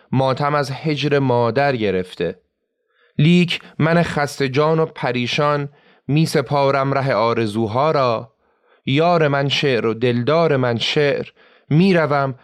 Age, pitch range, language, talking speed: 30-49, 125-160 Hz, Persian, 115 wpm